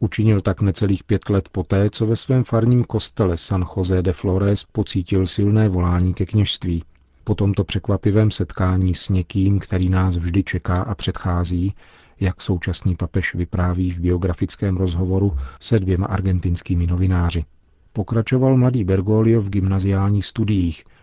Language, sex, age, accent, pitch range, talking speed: Czech, male, 40-59, native, 90-105 Hz, 140 wpm